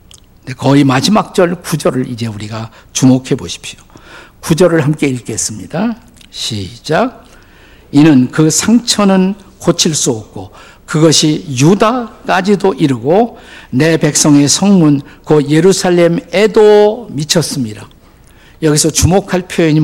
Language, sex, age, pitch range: Korean, male, 50-69, 130-185 Hz